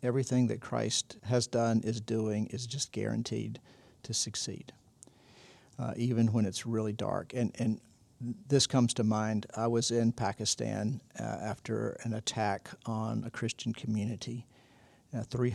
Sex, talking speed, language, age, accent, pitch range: male, 145 wpm, English, 50-69, American, 110-125 Hz